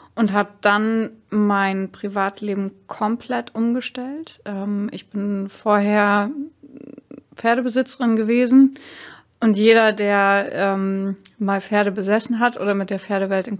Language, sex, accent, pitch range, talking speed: German, female, German, 200-230 Hz, 105 wpm